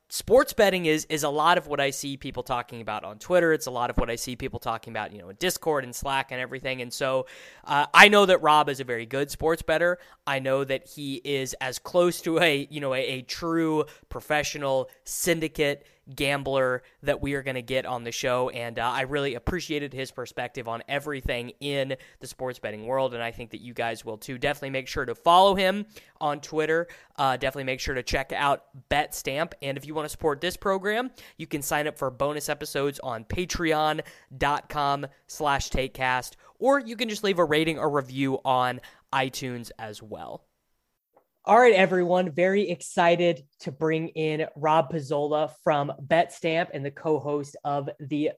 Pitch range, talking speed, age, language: 135-165 Hz, 200 wpm, 20-39, English